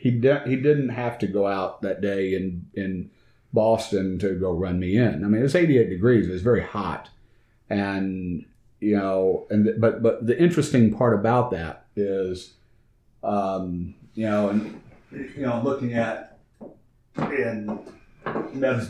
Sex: male